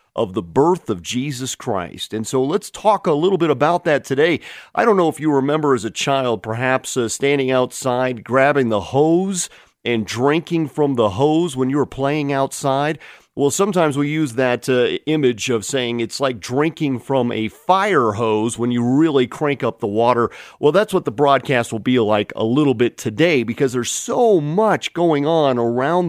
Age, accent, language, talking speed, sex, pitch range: 40-59, American, English, 195 wpm, male, 115-160 Hz